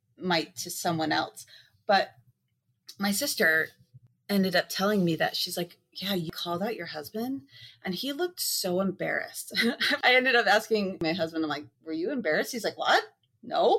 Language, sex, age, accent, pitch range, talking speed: English, female, 30-49, American, 165-230 Hz, 175 wpm